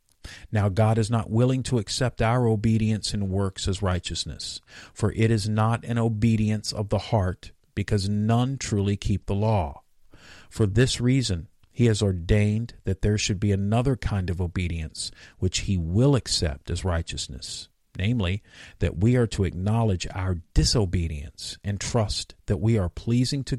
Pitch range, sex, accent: 90-115 Hz, male, American